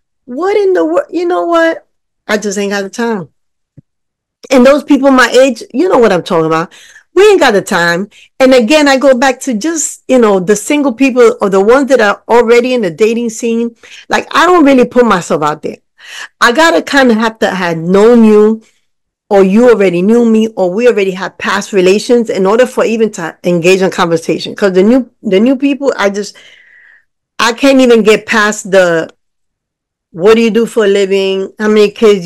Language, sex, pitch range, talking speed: English, female, 185-255 Hz, 210 wpm